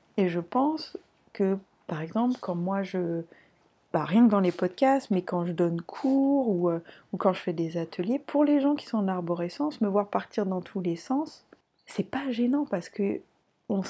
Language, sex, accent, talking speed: French, female, French, 205 wpm